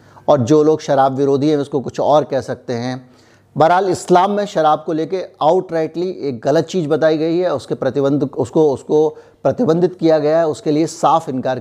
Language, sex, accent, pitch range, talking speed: Hindi, male, native, 135-175 Hz, 190 wpm